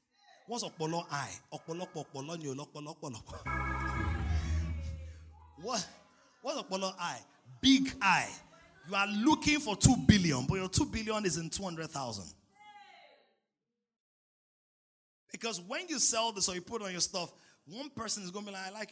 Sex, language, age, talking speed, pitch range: male, English, 30-49, 135 wpm, 125-205 Hz